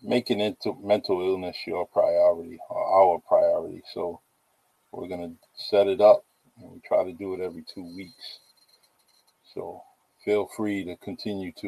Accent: American